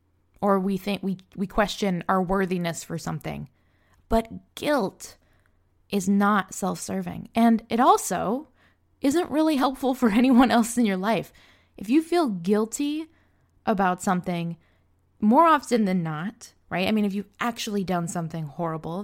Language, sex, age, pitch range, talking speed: English, female, 20-39, 165-215 Hz, 145 wpm